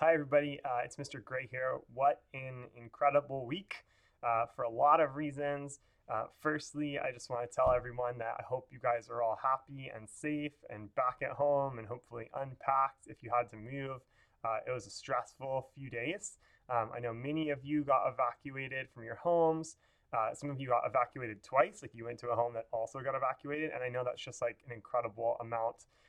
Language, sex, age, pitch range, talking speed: English, male, 20-39, 120-145 Hz, 210 wpm